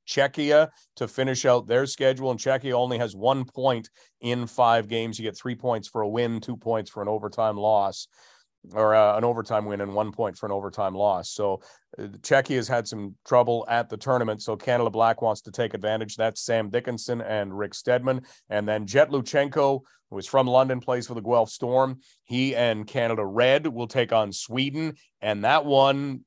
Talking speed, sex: 195 wpm, male